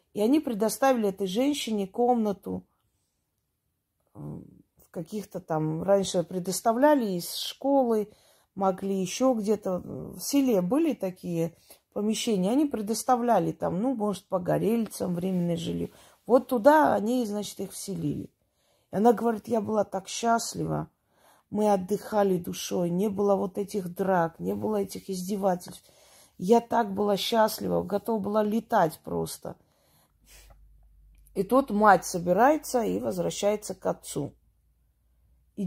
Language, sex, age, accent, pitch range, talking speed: Russian, female, 30-49, native, 180-230 Hz, 120 wpm